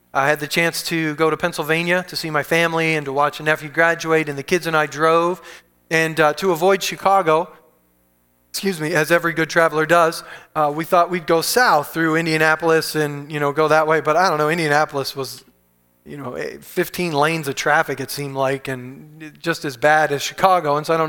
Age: 30-49